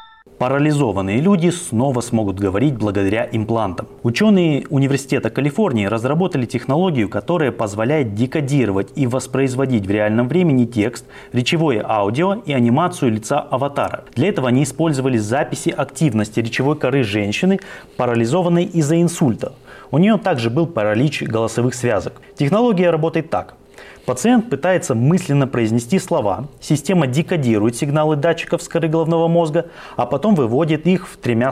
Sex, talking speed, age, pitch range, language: male, 130 wpm, 30-49, 120-165 Hz, Russian